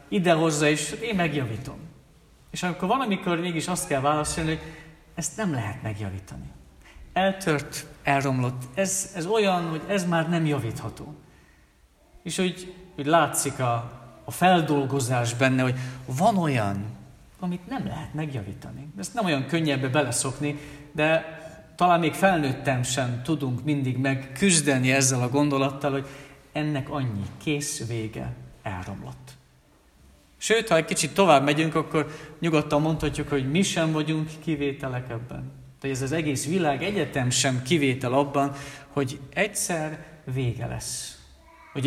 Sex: male